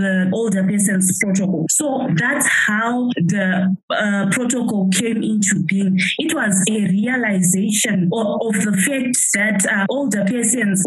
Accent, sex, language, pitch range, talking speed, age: South African, female, English, 195-245 Hz, 140 wpm, 20-39